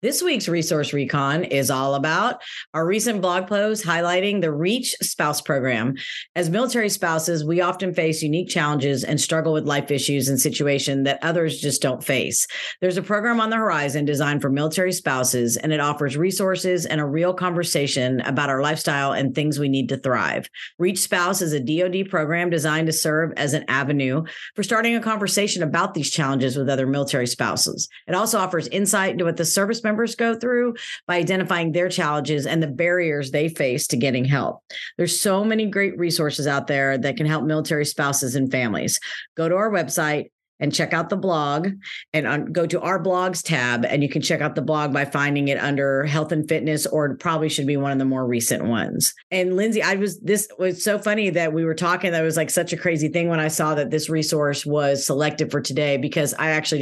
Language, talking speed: English, 210 wpm